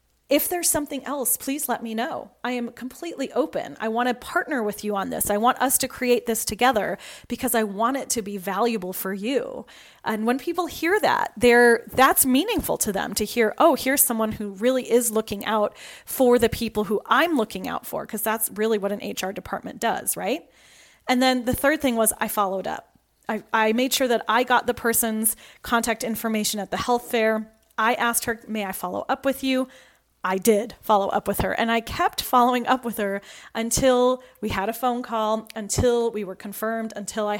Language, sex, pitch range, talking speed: English, female, 215-260 Hz, 210 wpm